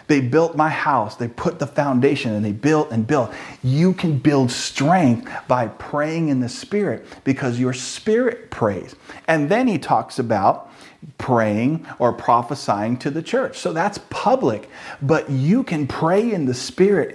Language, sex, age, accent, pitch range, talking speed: English, male, 40-59, American, 125-165 Hz, 165 wpm